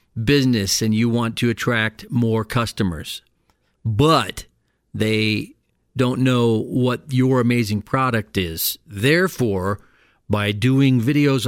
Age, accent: 50-69, American